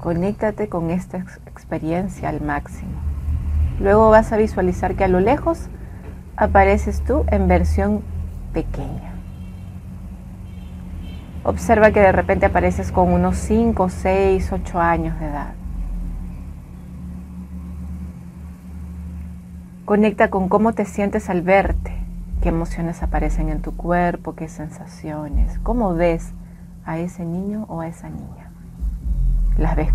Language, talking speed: Spanish, 115 wpm